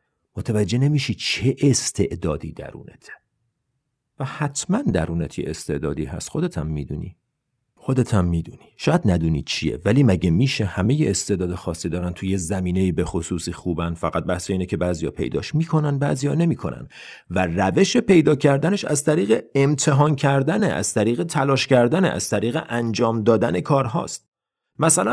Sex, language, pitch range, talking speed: male, Persian, 105-170 Hz, 135 wpm